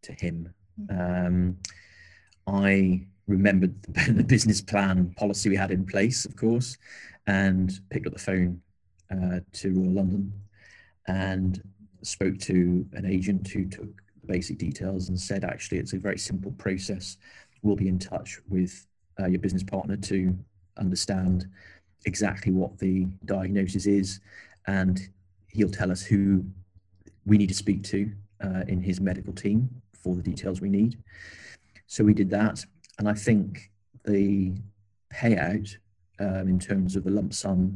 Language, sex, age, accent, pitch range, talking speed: English, male, 30-49, British, 95-105 Hz, 150 wpm